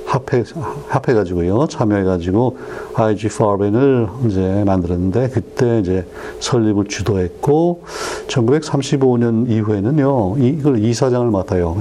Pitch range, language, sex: 100-135 Hz, Korean, male